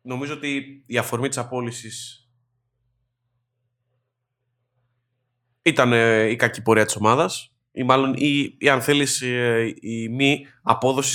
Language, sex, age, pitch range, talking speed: Greek, male, 20-39, 110-135 Hz, 95 wpm